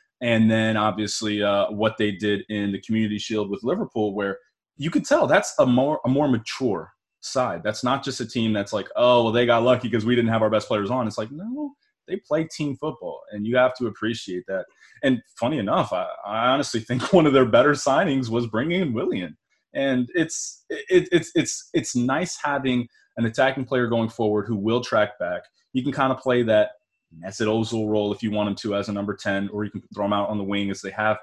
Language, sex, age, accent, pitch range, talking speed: English, male, 20-39, American, 105-145 Hz, 235 wpm